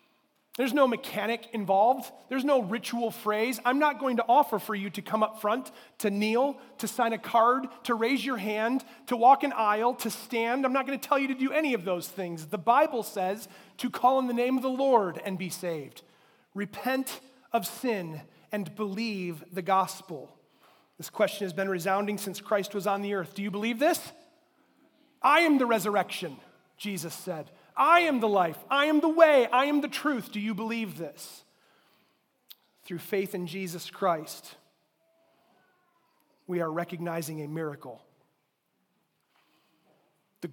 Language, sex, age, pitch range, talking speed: English, male, 30-49, 185-250 Hz, 170 wpm